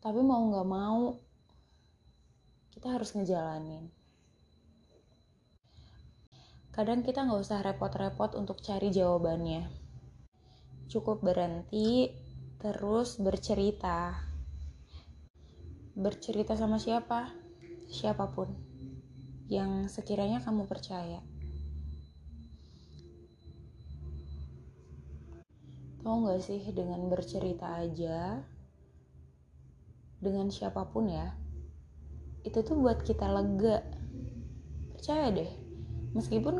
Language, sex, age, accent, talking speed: Indonesian, female, 20-39, native, 70 wpm